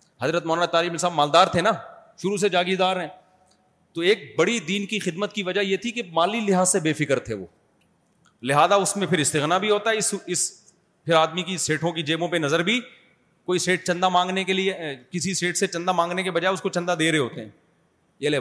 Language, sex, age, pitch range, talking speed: Urdu, male, 30-49, 150-185 Hz, 230 wpm